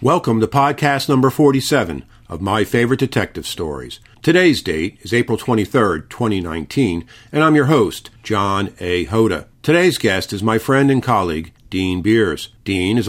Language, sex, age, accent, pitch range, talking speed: English, male, 50-69, American, 95-120 Hz, 155 wpm